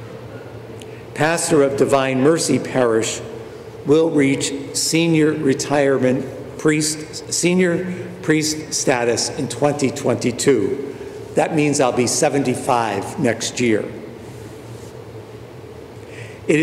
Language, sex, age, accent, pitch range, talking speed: English, male, 60-79, American, 115-150 Hz, 85 wpm